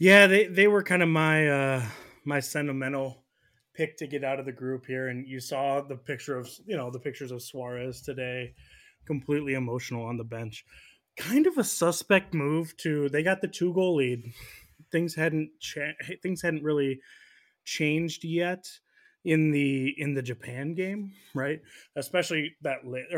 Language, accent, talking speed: English, American, 170 wpm